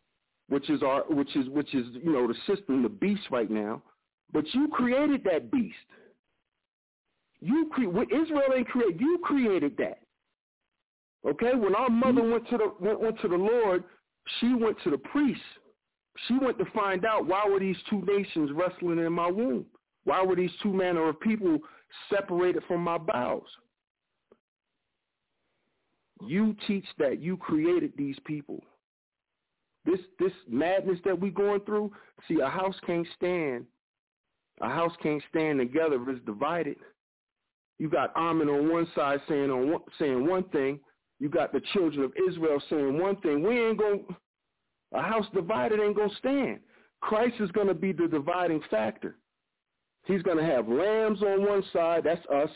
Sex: male